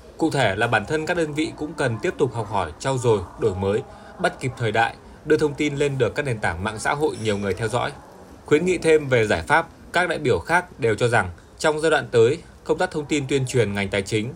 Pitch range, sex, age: 120-150 Hz, male, 20-39